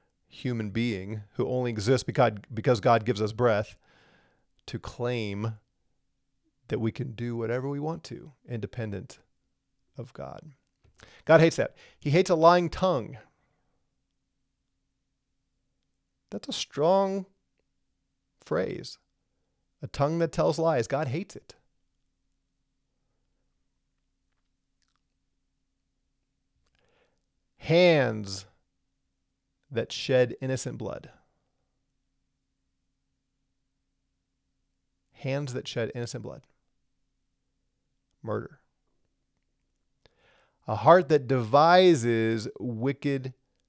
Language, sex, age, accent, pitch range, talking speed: English, male, 40-59, American, 115-145 Hz, 80 wpm